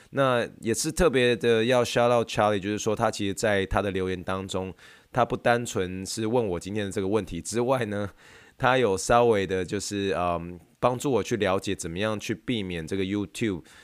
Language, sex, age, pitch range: Chinese, male, 20-39, 95-120 Hz